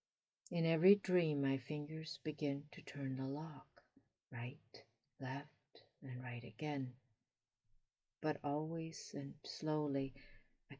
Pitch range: 125-150 Hz